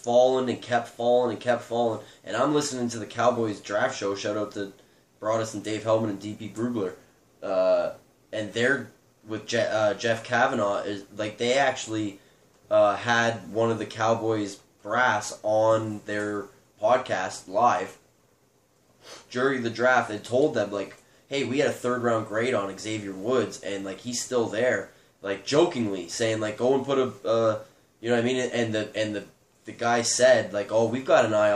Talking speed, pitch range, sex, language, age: 185 wpm, 105-120 Hz, male, English, 20-39